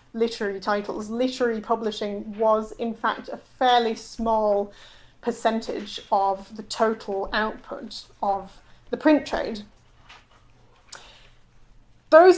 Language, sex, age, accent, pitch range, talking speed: English, female, 30-49, British, 215-250 Hz, 95 wpm